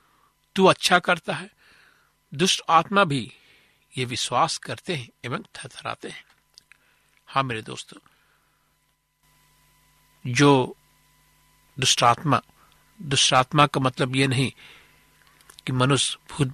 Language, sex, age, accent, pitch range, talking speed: Hindi, male, 60-79, native, 130-155 Hz, 105 wpm